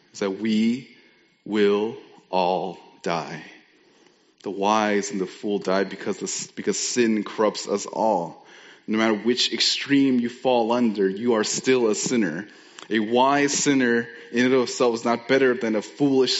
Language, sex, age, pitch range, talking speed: English, male, 30-49, 110-130 Hz, 155 wpm